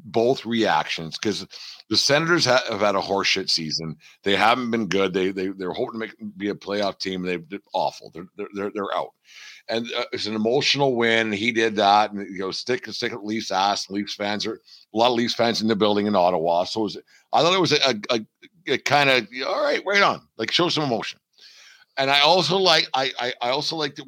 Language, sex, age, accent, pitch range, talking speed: English, male, 50-69, American, 105-135 Hz, 235 wpm